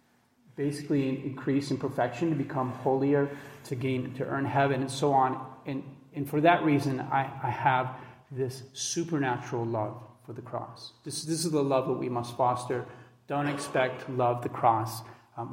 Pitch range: 130-155 Hz